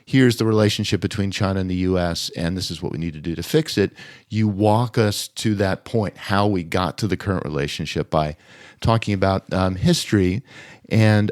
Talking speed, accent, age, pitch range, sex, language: 200 wpm, American, 50-69, 95-115 Hz, male, English